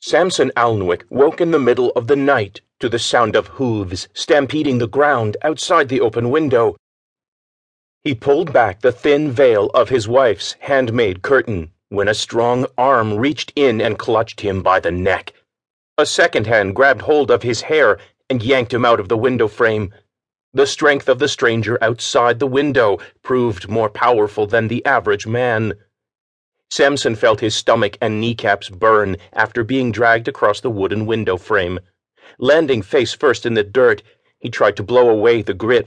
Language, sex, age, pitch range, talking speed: English, male, 40-59, 100-140 Hz, 170 wpm